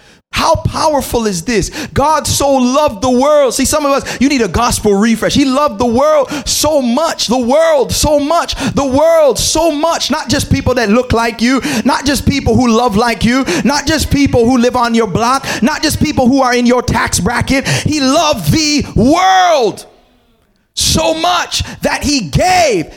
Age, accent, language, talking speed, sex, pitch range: 30-49, American, English, 190 wpm, male, 235-285 Hz